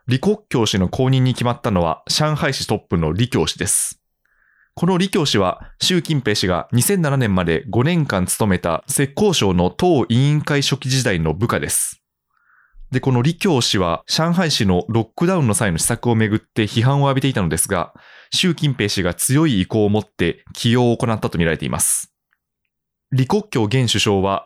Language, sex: Japanese, male